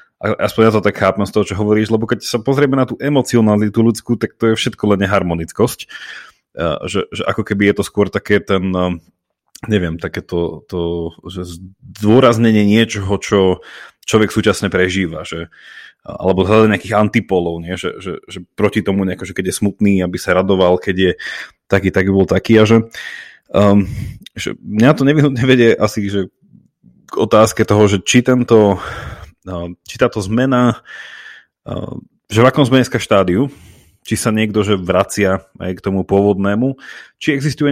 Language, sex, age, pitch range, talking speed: Slovak, male, 30-49, 95-115 Hz, 160 wpm